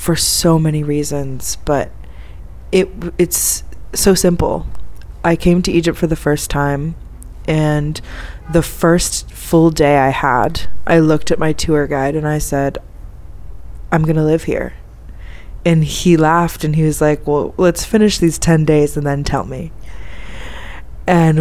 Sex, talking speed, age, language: female, 155 wpm, 20-39, English